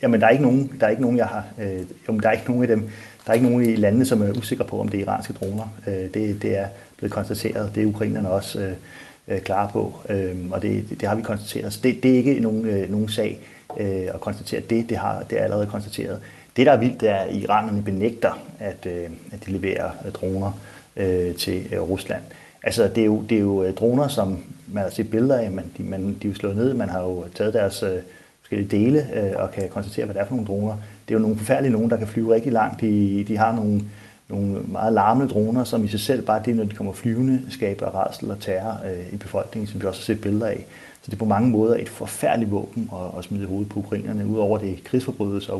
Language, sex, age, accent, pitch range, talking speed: Danish, male, 30-49, native, 100-110 Hz, 230 wpm